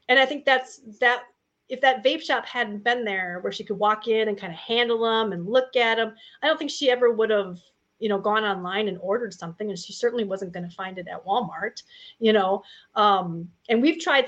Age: 30-49